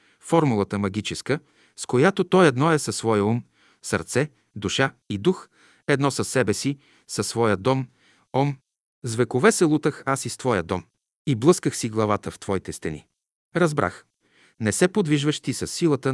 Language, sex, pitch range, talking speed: Bulgarian, male, 105-145 Hz, 160 wpm